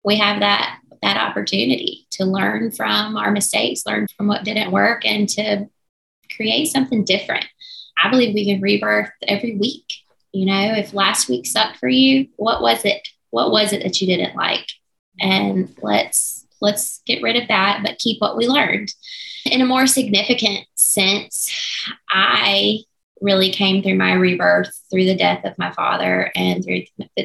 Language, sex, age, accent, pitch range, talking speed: English, female, 20-39, American, 175-205 Hz, 170 wpm